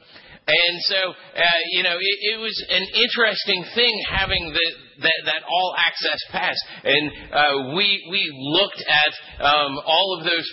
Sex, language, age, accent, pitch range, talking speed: male, English, 40-59, American, 130-180 Hz, 155 wpm